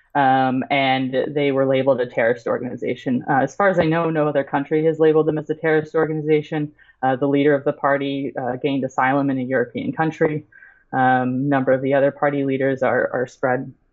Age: 20-39